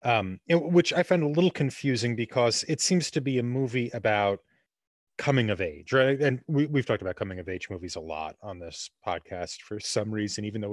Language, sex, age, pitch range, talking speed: English, male, 30-49, 100-140 Hz, 215 wpm